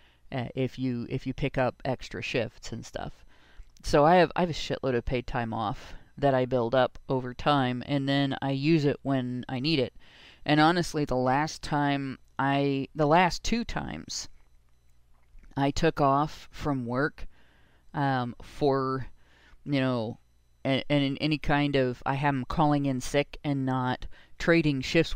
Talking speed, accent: 170 wpm, American